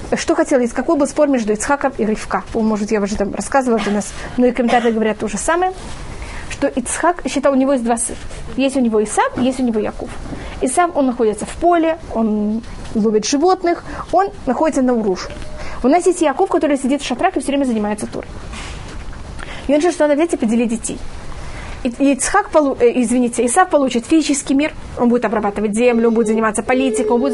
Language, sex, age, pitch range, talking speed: Russian, female, 20-39, 235-330 Hz, 195 wpm